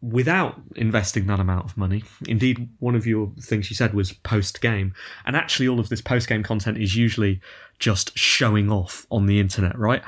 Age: 20-39